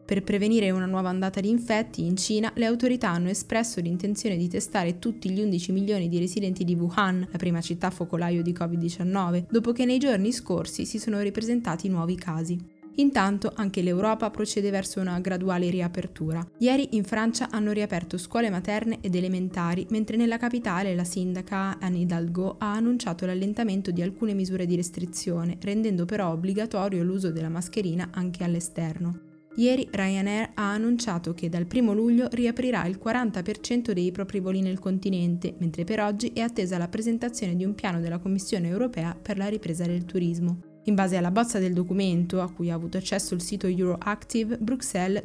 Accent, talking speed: native, 170 wpm